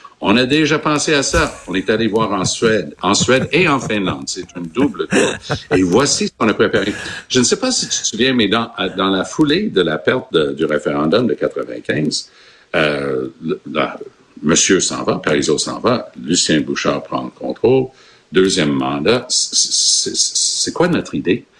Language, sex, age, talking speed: French, male, 60-79, 190 wpm